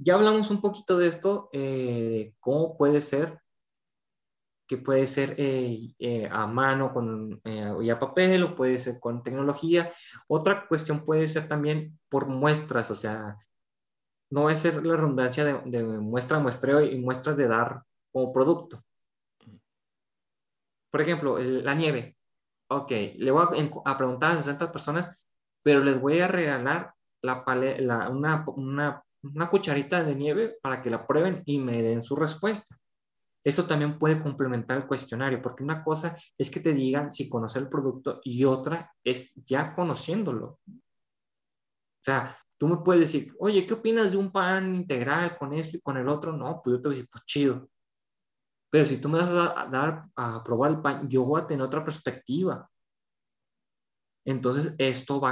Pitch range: 125-160 Hz